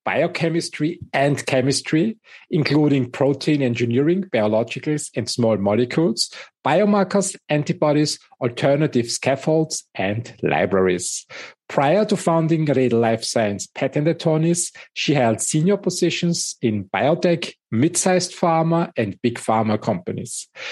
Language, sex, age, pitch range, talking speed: English, male, 50-69, 115-165 Hz, 105 wpm